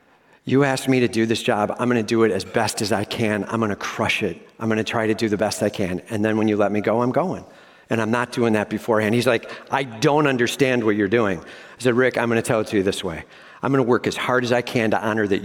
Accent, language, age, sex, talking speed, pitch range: American, English, 50-69, male, 305 wpm, 120-180 Hz